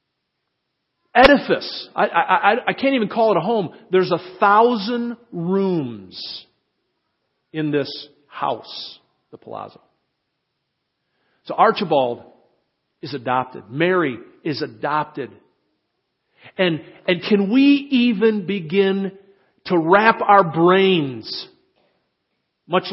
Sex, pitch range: male, 155-210 Hz